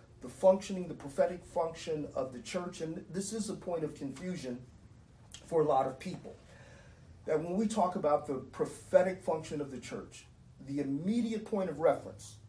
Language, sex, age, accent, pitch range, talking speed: English, male, 40-59, American, 130-175 Hz, 175 wpm